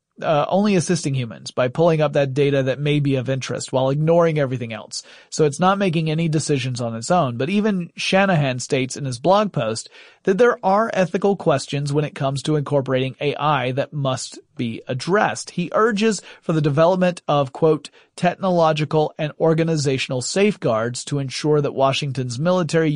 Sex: male